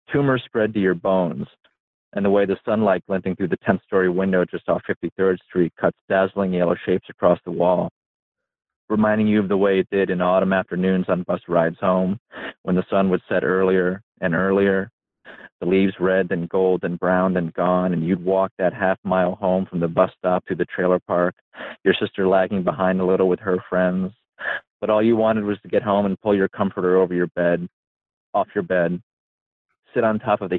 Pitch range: 90-100 Hz